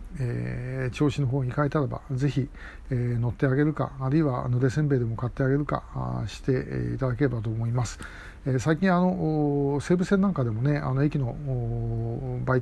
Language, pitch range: Japanese, 125-155 Hz